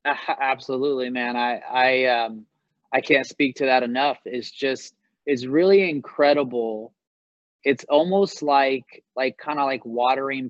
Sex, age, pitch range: male, 20-39, 130-160 Hz